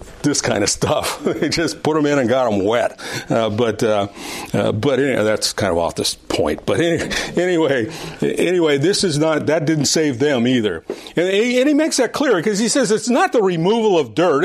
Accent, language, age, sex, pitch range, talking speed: American, English, 50-69, male, 145-215 Hz, 220 wpm